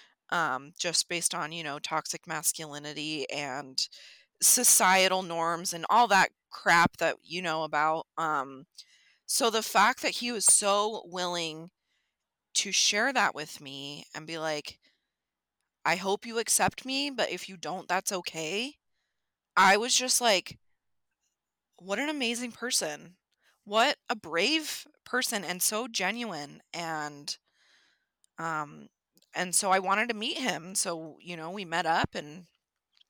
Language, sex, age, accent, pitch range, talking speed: English, female, 20-39, American, 160-205 Hz, 140 wpm